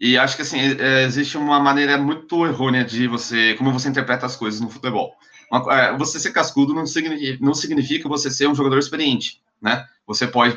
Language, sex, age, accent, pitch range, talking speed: Portuguese, male, 30-49, Brazilian, 120-145 Hz, 185 wpm